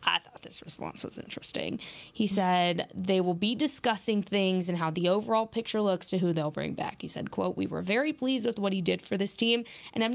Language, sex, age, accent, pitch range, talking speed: English, female, 20-39, American, 180-235 Hz, 235 wpm